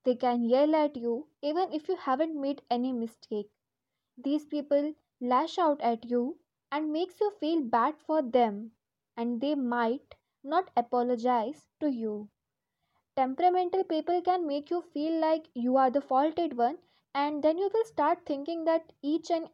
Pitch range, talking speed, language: 240-310 Hz, 165 wpm, English